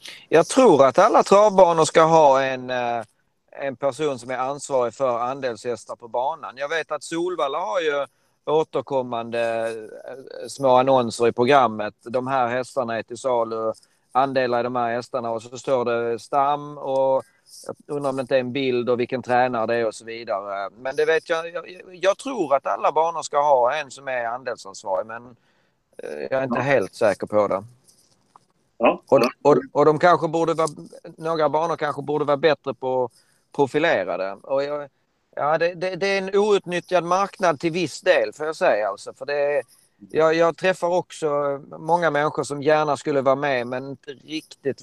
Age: 30-49